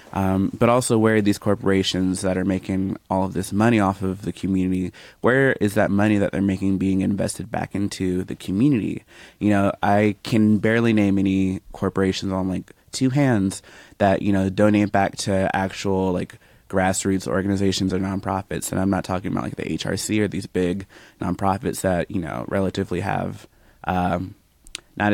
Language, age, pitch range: English, 20-39, 95-105 Hz